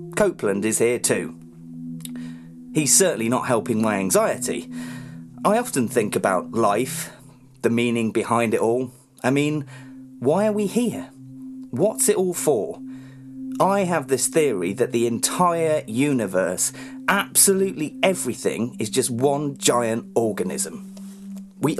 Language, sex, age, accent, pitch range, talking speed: English, male, 30-49, British, 120-195 Hz, 125 wpm